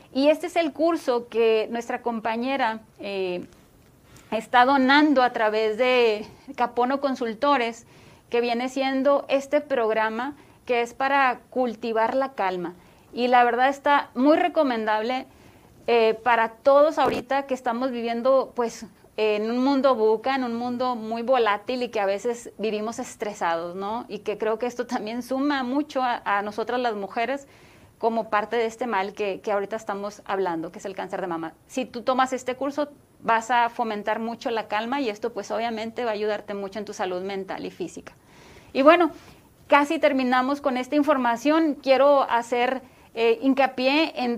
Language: English